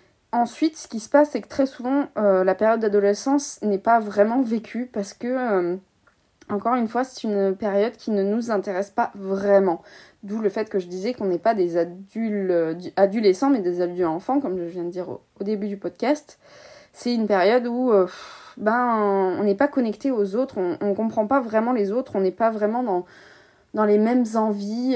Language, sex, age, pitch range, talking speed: French, female, 20-39, 190-235 Hz, 205 wpm